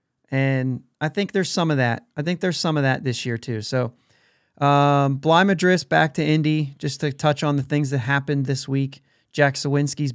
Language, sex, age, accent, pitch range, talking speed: English, male, 30-49, American, 130-155 Hz, 205 wpm